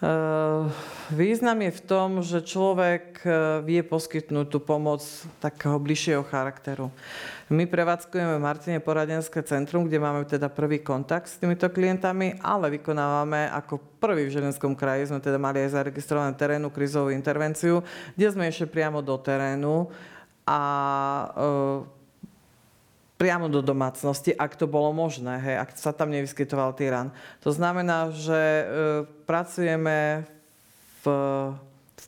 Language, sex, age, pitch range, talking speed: Slovak, female, 40-59, 140-160 Hz, 135 wpm